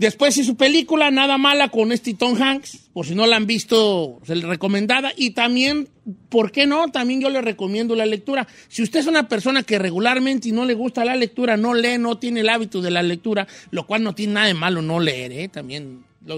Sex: male